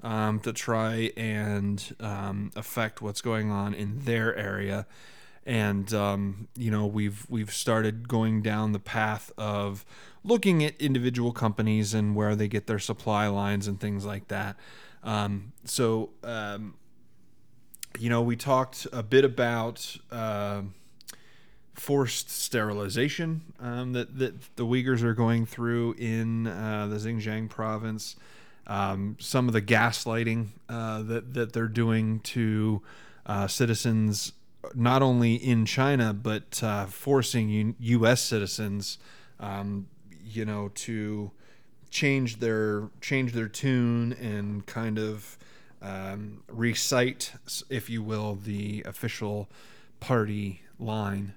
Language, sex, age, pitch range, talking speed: English, male, 30-49, 105-120 Hz, 125 wpm